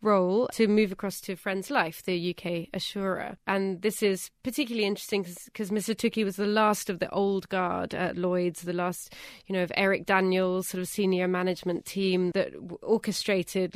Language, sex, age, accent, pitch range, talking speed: English, female, 20-39, British, 180-205 Hz, 180 wpm